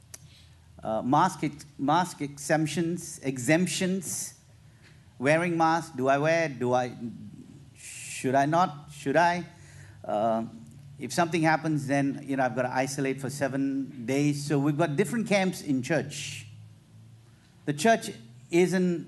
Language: English